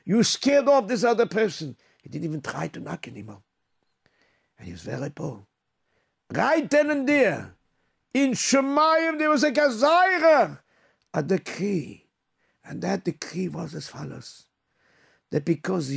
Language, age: English, 60-79